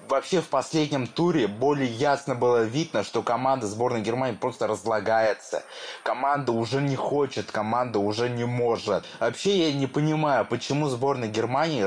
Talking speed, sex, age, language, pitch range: 145 wpm, male, 20-39, Russian, 115-145 Hz